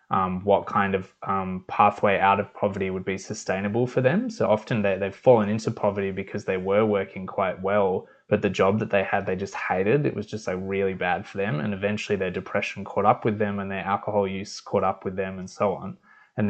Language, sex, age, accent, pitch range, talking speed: English, male, 20-39, Australian, 95-110 Hz, 225 wpm